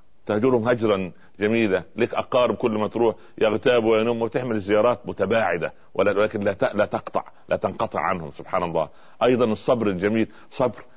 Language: Arabic